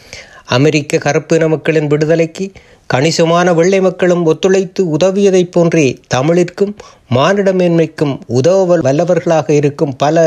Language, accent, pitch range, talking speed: Tamil, native, 145-175 Hz, 100 wpm